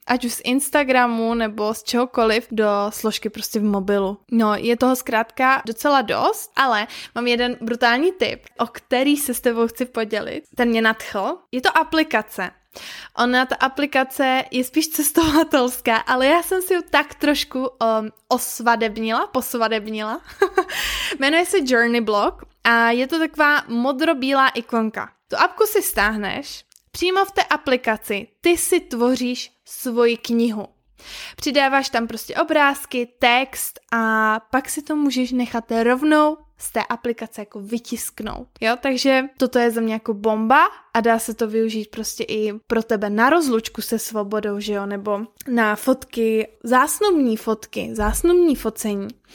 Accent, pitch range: native, 225-275 Hz